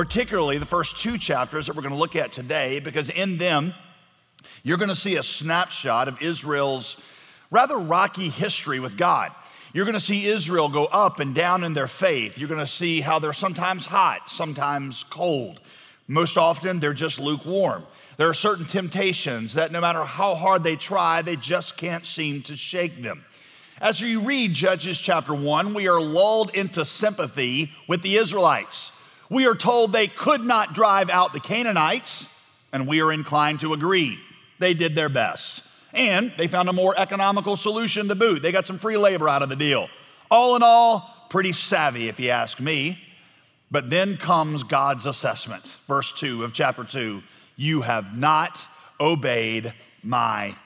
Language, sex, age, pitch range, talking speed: English, male, 40-59, 145-195 Hz, 175 wpm